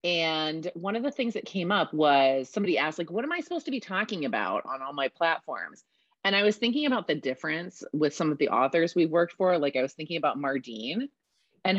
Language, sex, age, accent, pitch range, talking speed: English, female, 30-49, American, 145-190 Hz, 235 wpm